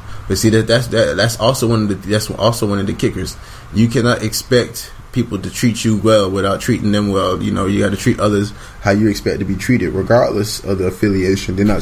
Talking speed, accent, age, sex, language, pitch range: 240 wpm, American, 20-39, male, English, 90-110 Hz